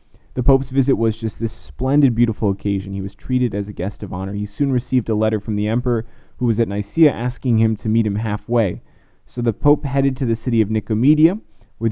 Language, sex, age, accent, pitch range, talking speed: English, male, 20-39, American, 105-125 Hz, 225 wpm